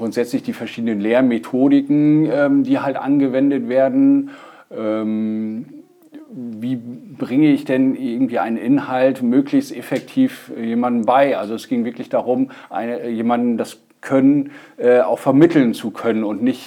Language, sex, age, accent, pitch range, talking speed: German, male, 40-59, German, 105-150 Hz, 125 wpm